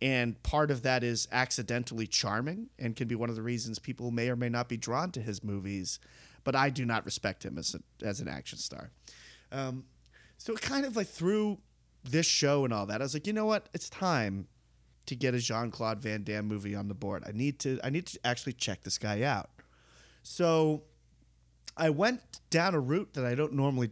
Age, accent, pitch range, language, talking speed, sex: 30-49, American, 115-155 Hz, English, 220 wpm, male